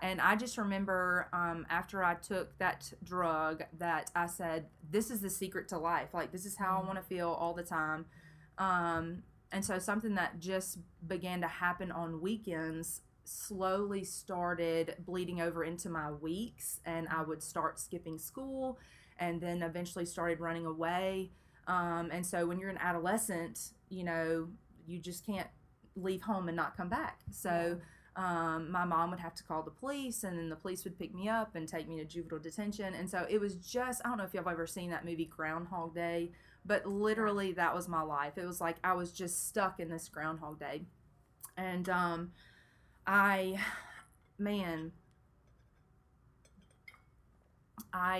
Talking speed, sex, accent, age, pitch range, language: 175 wpm, female, American, 30-49, 165-190 Hz, English